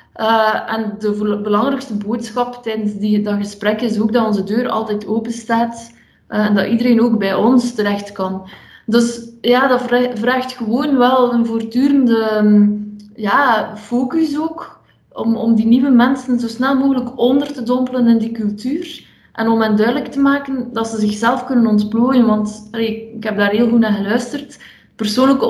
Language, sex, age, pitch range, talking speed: Dutch, female, 20-39, 215-245 Hz, 160 wpm